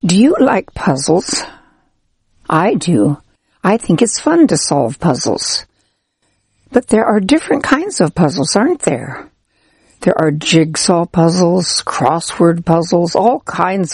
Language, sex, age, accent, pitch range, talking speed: English, female, 60-79, American, 155-220 Hz, 130 wpm